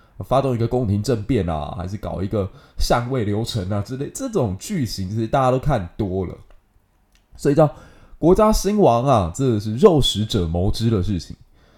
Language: Chinese